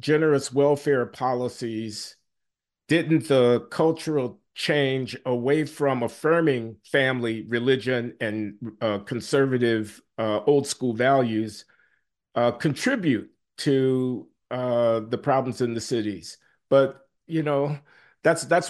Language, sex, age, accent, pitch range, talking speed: English, male, 50-69, American, 120-160 Hz, 105 wpm